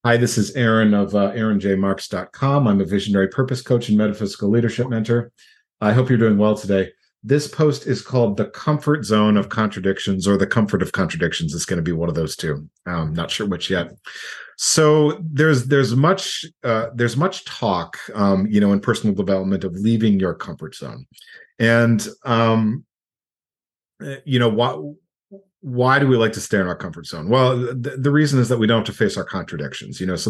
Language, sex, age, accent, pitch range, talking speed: English, male, 40-59, American, 100-130 Hz, 195 wpm